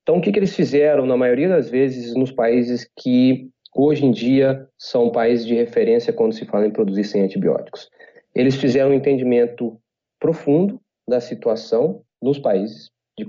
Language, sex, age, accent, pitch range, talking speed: Portuguese, male, 30-49, Brazilian, 115-160 Hz, 165 wpm